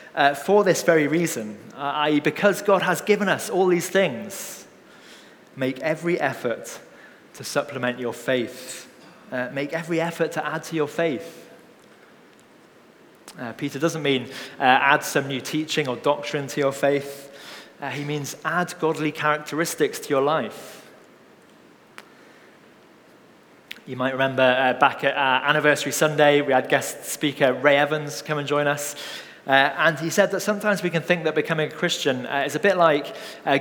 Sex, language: male, English